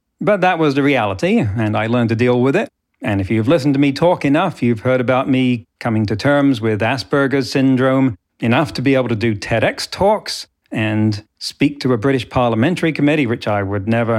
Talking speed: 205 wpm